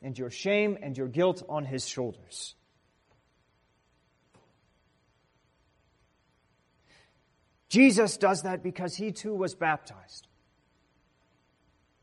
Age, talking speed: 40-59, 85 wpm